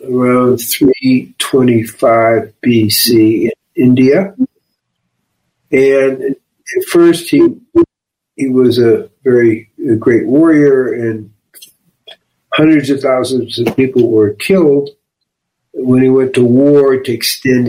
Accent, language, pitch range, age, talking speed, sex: American, English, 120-175 Hz, 60-79, 110 wpm, male